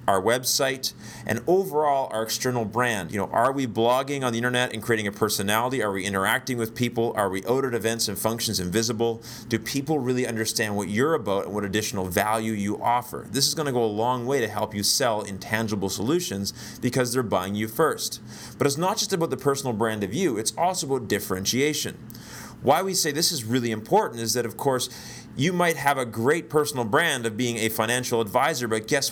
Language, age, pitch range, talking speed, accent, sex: English, 30-49, 110-135 Hz, 210 wpm, American, male